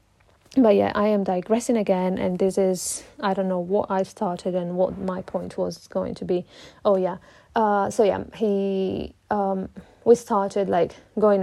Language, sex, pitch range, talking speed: English, female, 185-205 Hz, 180 wpm